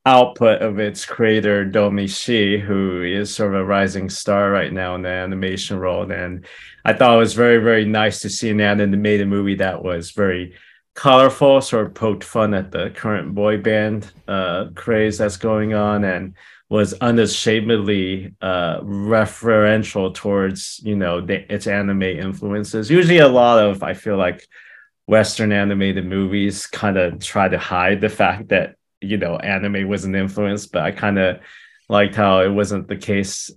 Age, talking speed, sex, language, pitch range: 30-49, 170 wpm, male, English, 95-110 Hz